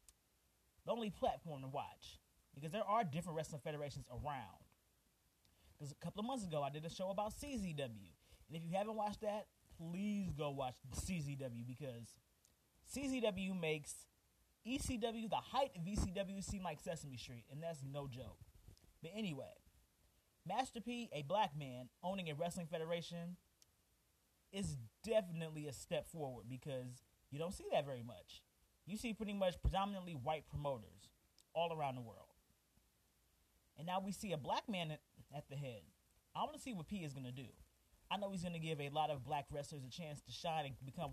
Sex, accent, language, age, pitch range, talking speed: male, American, English, 20-39, 130-190 Hz, 175 wpm